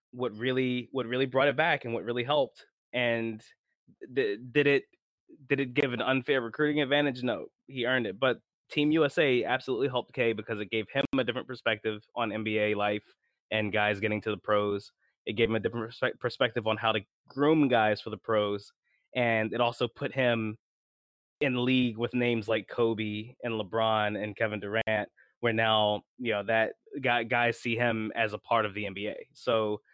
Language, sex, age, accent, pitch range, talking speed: English, male, 20-39, American, 110-130 Hz, 185 wpm